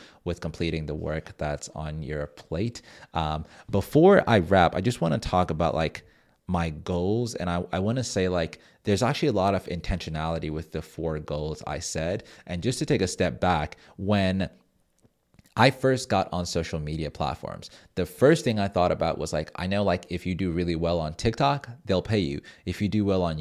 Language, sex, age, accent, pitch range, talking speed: English, male, 30-49, American, 80-100 Hz, 210 wpm